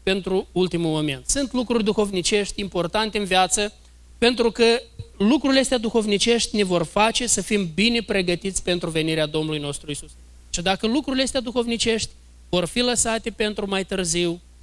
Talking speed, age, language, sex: 150 wpm, 20-39, Romanian, male